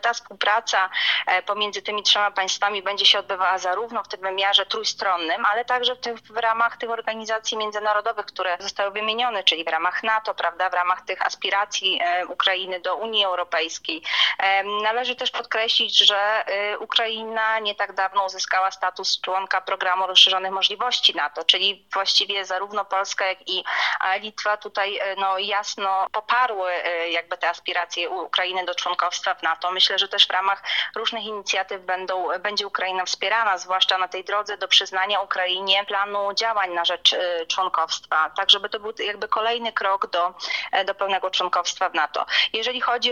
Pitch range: 185-220 Hz